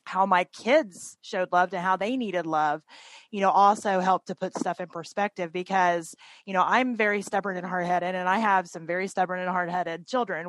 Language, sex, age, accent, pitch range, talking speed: English, female, 20-39, American, 180-220 Hz, 205 wpm